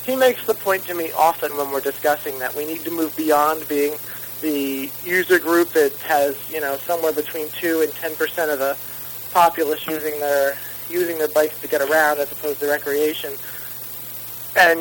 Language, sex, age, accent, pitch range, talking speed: English, male, 40-59, American, 145-175 Hz, 185 wpm